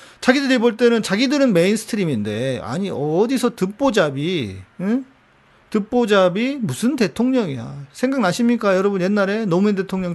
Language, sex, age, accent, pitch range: Korean, male, 40-59, native, 155-225 Hz